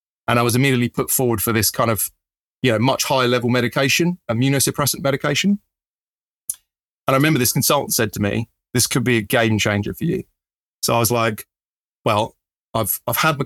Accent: British